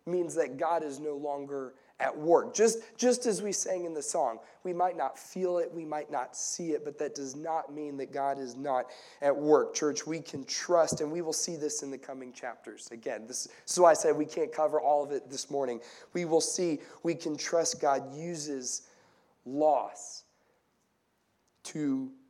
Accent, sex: American, male